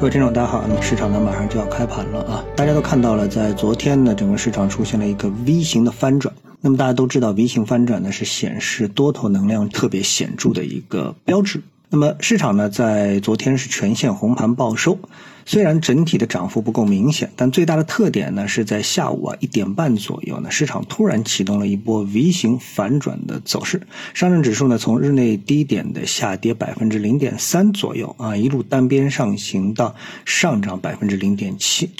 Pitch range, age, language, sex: 105-150 Hz, 50-69, Chinese, male